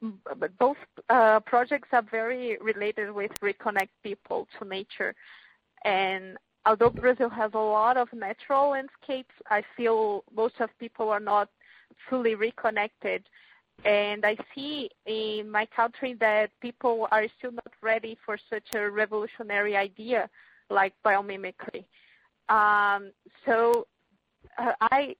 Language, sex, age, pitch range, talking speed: Turkish, female, 20-39, 210-240 Hz, 125 wpm